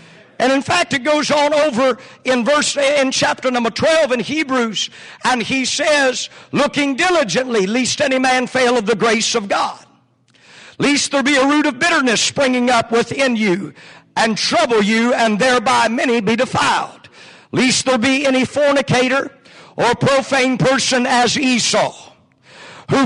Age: 50-69